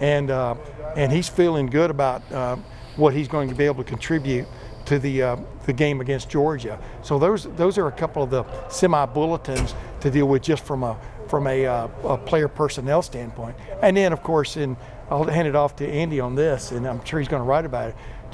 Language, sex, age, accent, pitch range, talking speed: English, male, 60-79, American, 130-160 Hz, 215 wpm